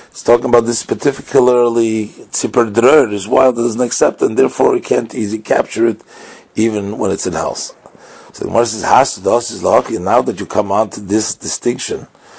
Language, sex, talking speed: English, male, 185 wpm